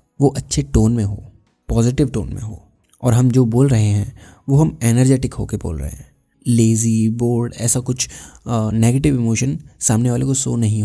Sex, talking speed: male, 185 wpm